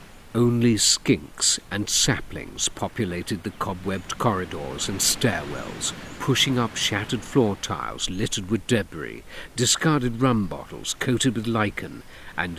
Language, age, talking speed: English, 50-69, 120 wpm